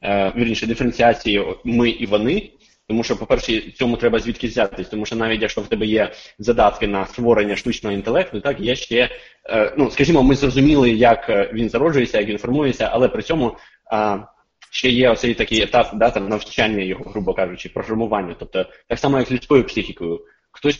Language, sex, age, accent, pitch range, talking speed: Ukrainian, male, 20-39, native, 105-135 Hz, 175 wpm